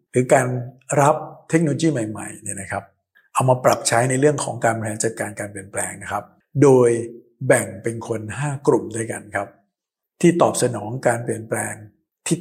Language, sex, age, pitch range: Thai, male, 60-79, 110-135 Hz